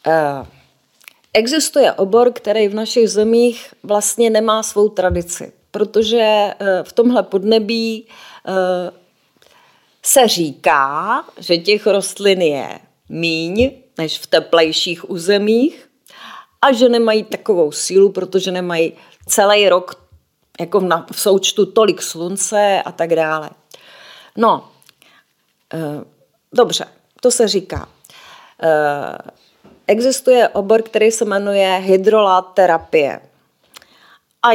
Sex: female